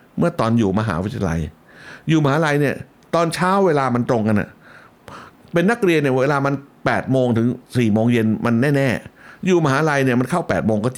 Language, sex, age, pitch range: Thai, male, 60-79, 110-155 Hz